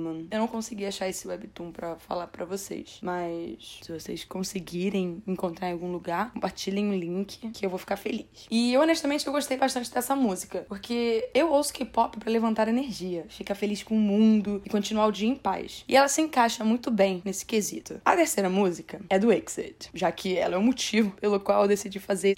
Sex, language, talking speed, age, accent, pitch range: female, Portuguese, 205 wpm, 20-39, Brazilian, 190-220 Hz